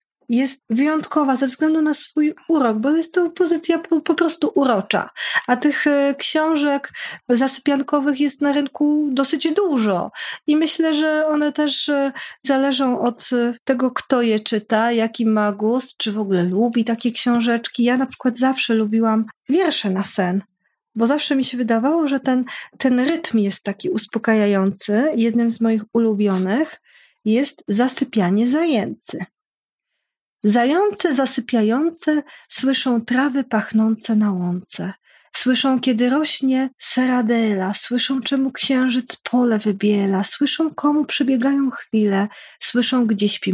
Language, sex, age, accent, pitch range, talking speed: Polish, female, 30-49, native, 225-295 Hz, 130 wpm